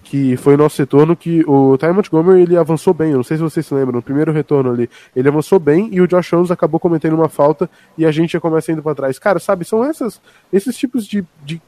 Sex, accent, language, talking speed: male, Brazilian, Portuguese, 255 wpm